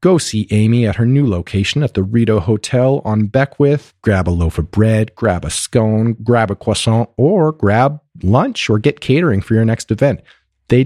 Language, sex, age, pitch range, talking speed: English, male, 40-59, 100-140 Hz, 195 wpm